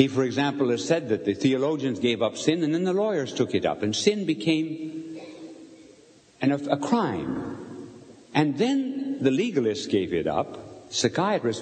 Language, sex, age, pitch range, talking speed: English, male, 60-79, 120-195 Hz, 160 wpm